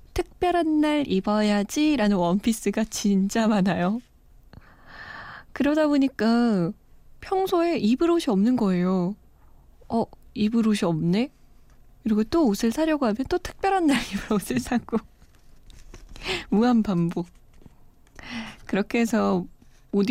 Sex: female